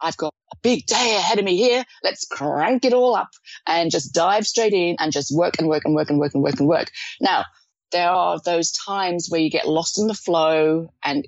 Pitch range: 160-195 Hz